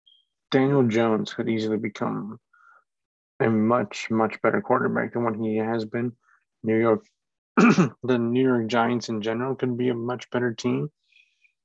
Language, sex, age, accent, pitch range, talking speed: English, male, 20-39, American, 110-125 Hz, 150 wpm